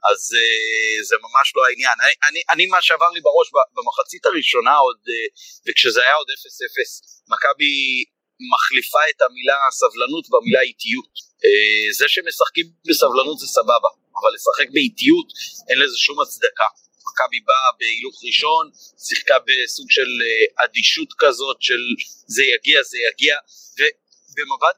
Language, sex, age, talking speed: Hebrew, male, 30-49, 125 wpm